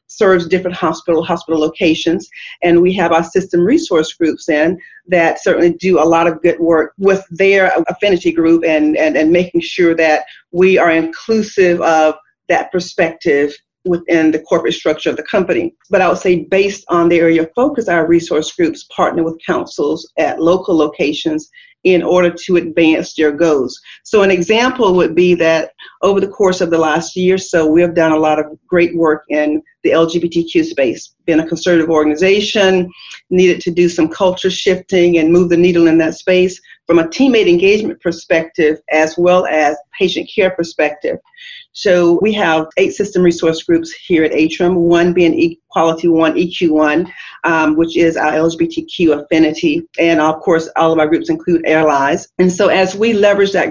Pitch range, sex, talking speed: 165-190 Hz, female, 180 wpm